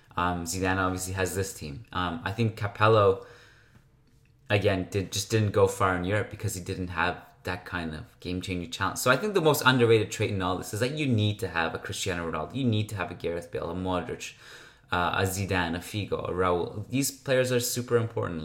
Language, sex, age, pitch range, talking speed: English, male, 20-39, 90-120 Hz, 220 wpm